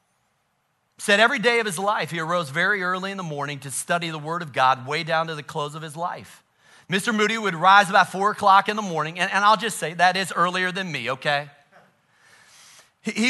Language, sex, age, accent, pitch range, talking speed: English, male, 40-59, American, 155-210 Hz, 220 wpm